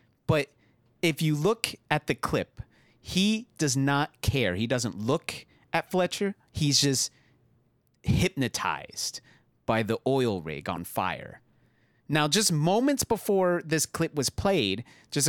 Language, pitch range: English, 115-150 Hz